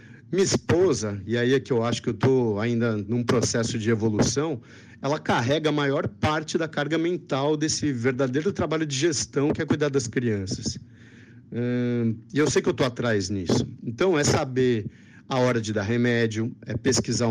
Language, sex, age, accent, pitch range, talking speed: Portuguese, male, 50-69, Brazilian, 115-135 Hz, 185 wpm